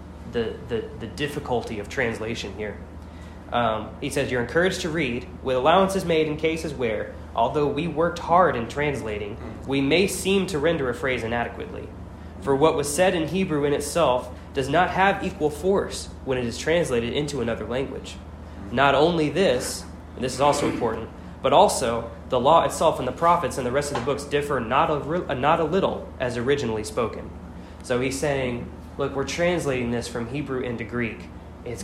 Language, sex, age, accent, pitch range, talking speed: English, male, 20-39, American, 105-145 Hz, 185 wpm